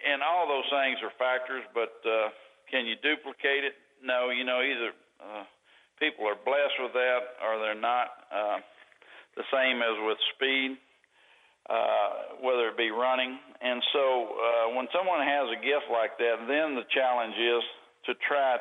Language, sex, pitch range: English, male, 115-130 Hz